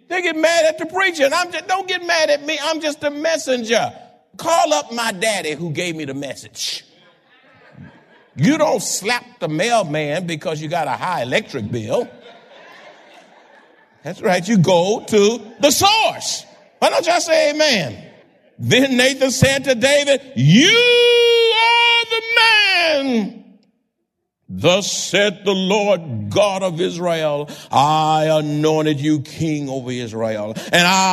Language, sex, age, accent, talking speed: English, male, 50-69, American, 145 wpm